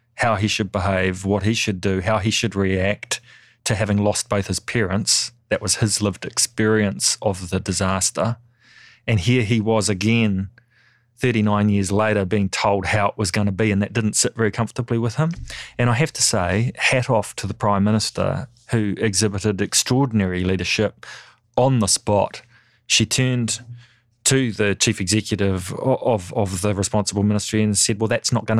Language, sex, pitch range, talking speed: English, male, 100-120 Hz, 180 wpm